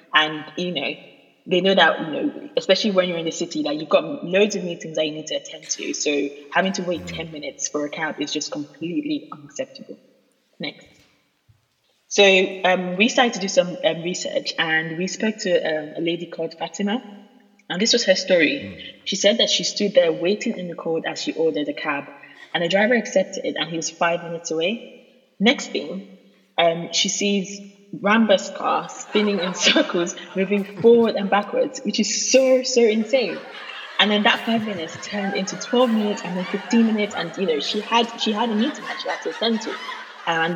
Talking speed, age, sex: 205 wpm, 20-39, female